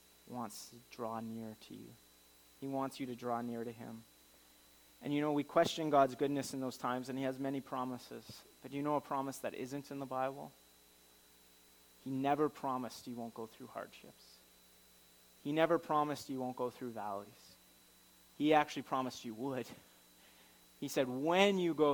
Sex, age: male, 30-49